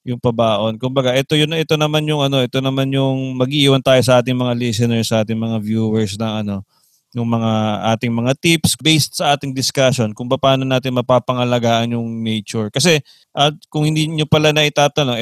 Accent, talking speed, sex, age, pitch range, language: Filipino, 160 wpm, male, 20-39, 120-150 Hz, English